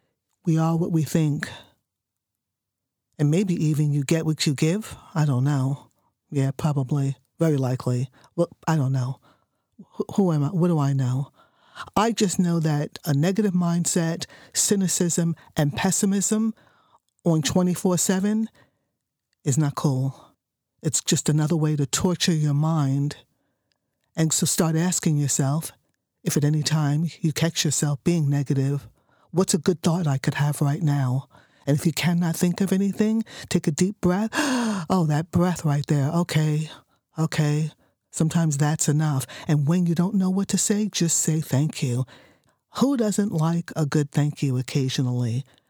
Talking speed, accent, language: 155 wpm, American, English